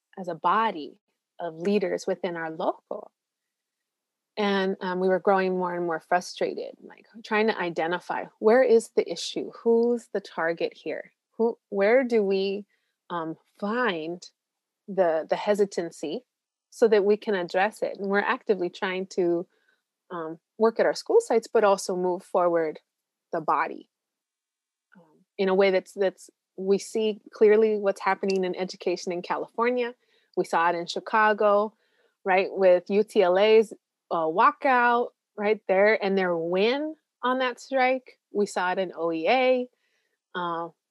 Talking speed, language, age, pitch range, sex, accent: 145 wpm, English, 20-39, 185-230 Hz, female, American